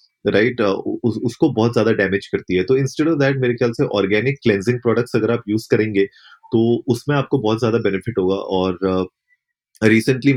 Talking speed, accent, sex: 175 wpm, native, male